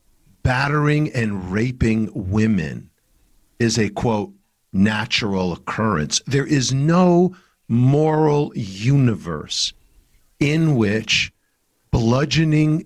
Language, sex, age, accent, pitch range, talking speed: English, male, 50-69, American, 110-150 Hz, 80 wpm